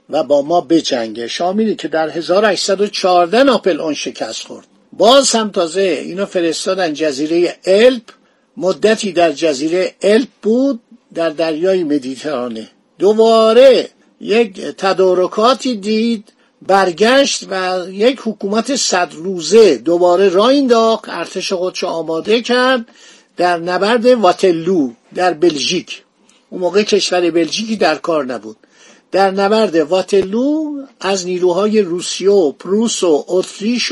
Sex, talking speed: male, 120 wpm